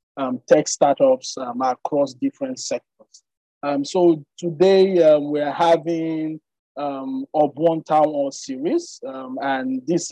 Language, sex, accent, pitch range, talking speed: English, male, Nigerian, 140-180 Hz, 130 wpm